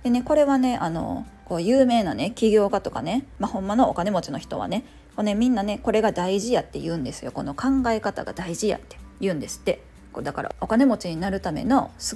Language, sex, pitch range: Japanese, female, 205-275 Hz